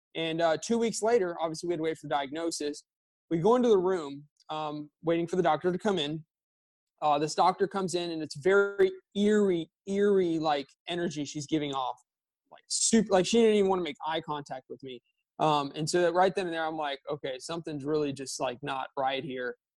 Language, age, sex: English, 20-39, male